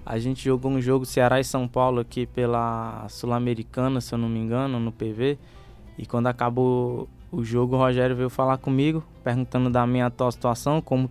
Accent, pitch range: Brazilian, 120-135 Hz